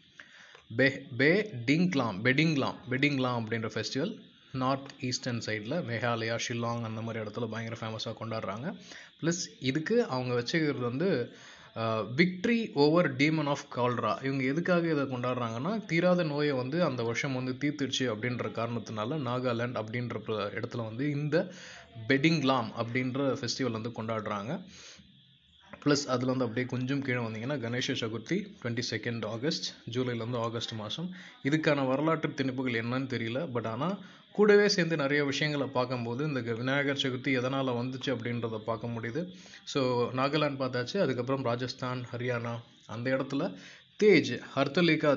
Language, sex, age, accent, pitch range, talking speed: Tamil, male, 20-39, native, 120-150 Hz, 130 wpm